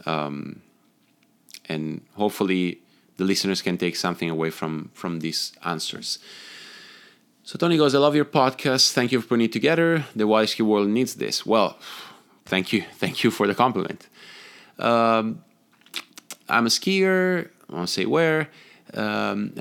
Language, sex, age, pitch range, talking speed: English, male, 30-49, 90-130 Hz, 150 wpm